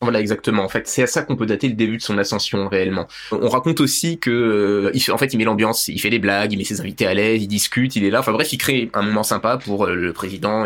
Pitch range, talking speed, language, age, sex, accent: 100-125 Hz, 280 wpm, French, 20-39, male, French